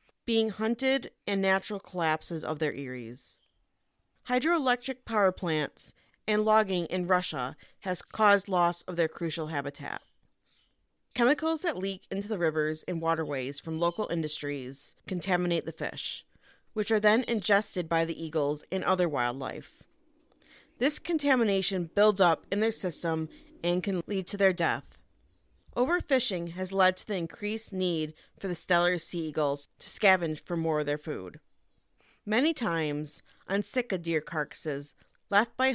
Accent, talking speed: American, 145 wpm